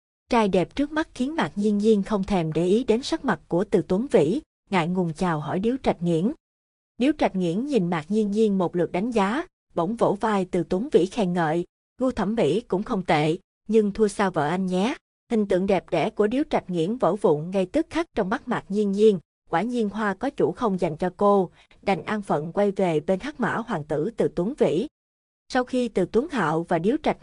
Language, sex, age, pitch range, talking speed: Vietnamese, female, 20-39, 180-225 Hz, 230 wpm